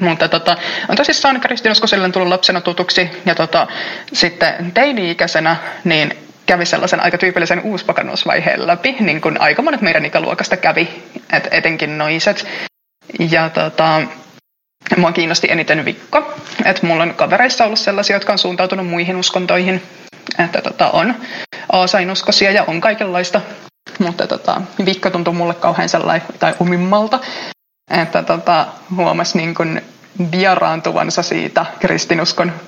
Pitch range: 170-210 Hz